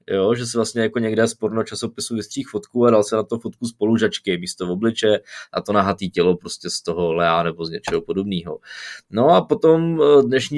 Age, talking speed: 20-39, 215 wpm